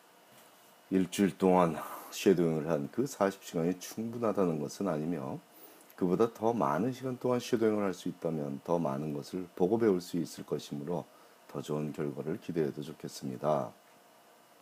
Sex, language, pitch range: male, Korean, 75-100 Hz